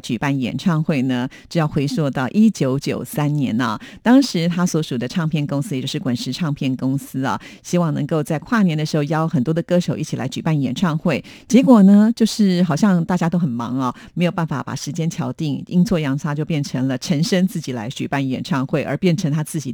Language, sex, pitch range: Chinese, female, 140-185 Hz